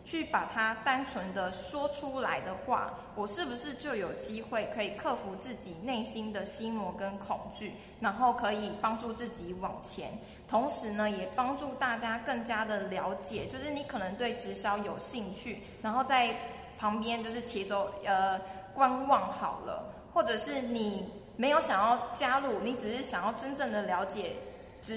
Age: 20-39